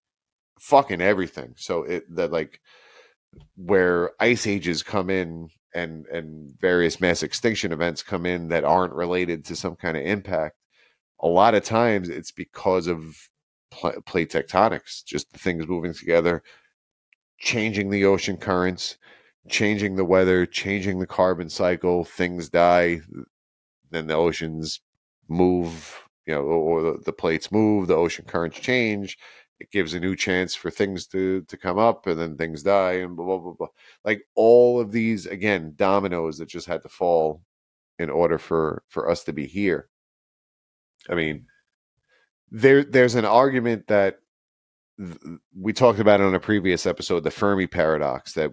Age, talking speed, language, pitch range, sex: 30-49, 155 wpm, English, 85-100 Hz, male